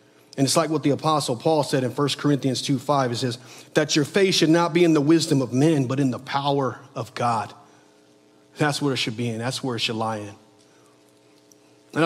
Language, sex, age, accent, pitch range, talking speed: English, male, 40-59, American, 115-140 Hz, 225 wpm